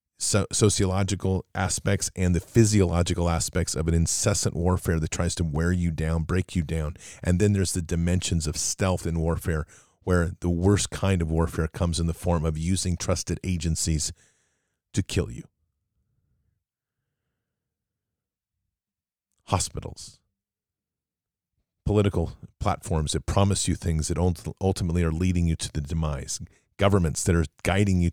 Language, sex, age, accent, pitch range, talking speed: English, male, 40-59, American, 85-100 Hz, 145 wpm